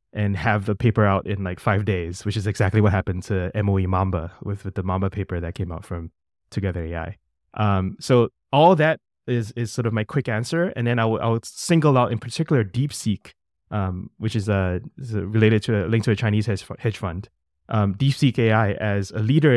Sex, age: male, 20-39